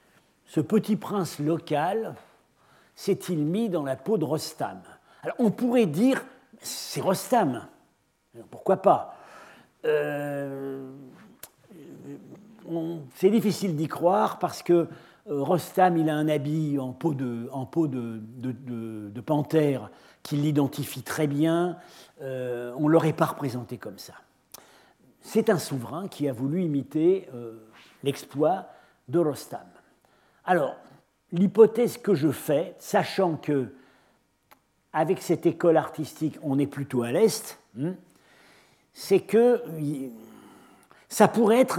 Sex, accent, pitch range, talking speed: male, French, 140-185 Hz, 125 wpm